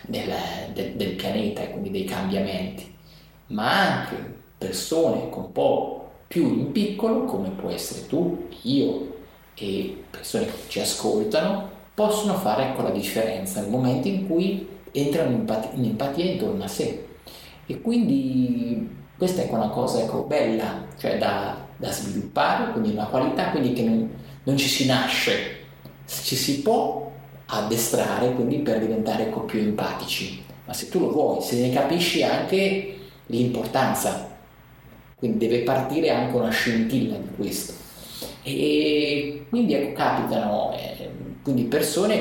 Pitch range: 115-190 Hz